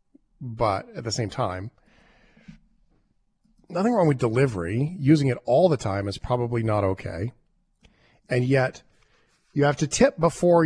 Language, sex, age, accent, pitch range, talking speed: English, male, 40-59, American, 125-170 Hz, 140 wpm